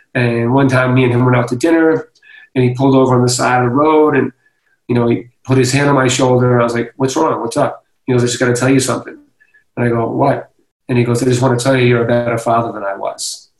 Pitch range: 125-160 Hz